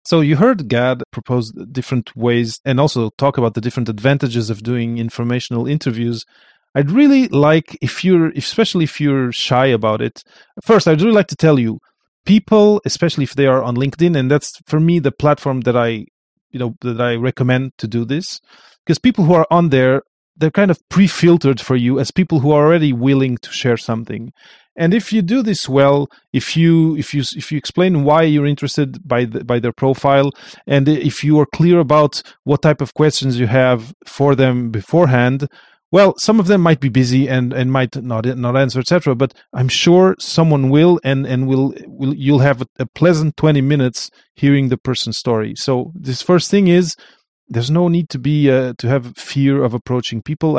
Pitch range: 125-160 Hz